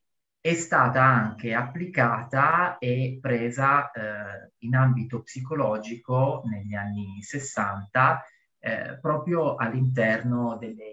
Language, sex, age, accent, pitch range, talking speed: Italian, male, 30-49, native, 115-135 Hz, 95 wpm